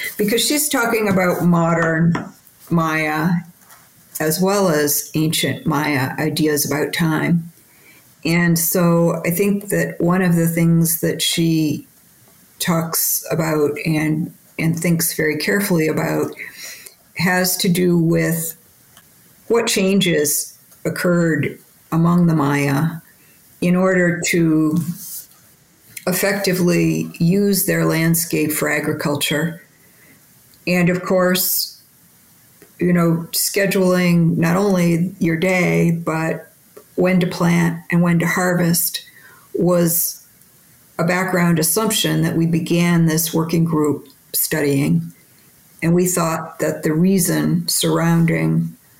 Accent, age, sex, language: American, 50-69, female, English